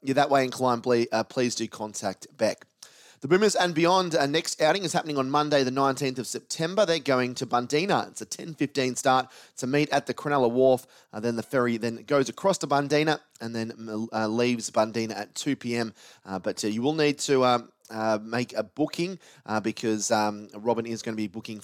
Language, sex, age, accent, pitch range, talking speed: English, male, 30-49, Australian, 115-140 Hz, 215 wpm